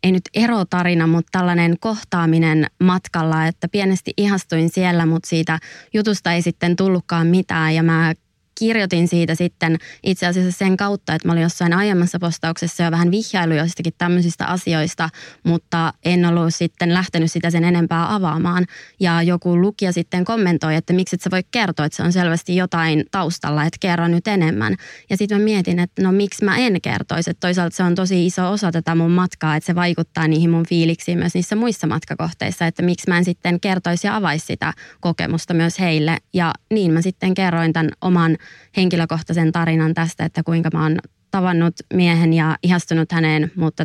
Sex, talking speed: female, 180 wpm